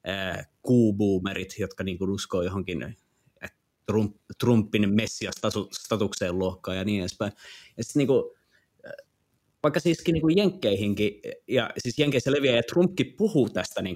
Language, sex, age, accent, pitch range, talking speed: Finnish, male, 30-49, native, 105-130 Hz, 140 wpm